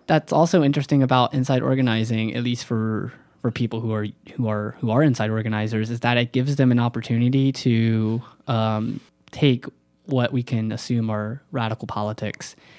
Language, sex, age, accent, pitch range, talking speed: English, male, 20-39, American, 110-130 Hz, 170 wpm